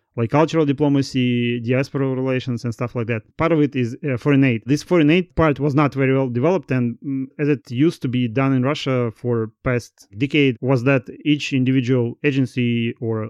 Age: 30-49